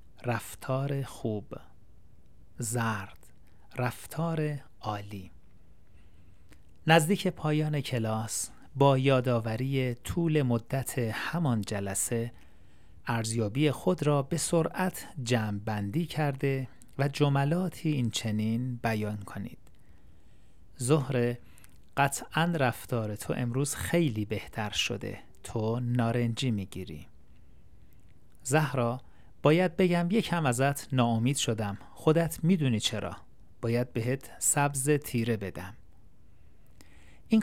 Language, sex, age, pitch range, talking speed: Persian, male, 40-59, 100-140 Hz, 85 wpm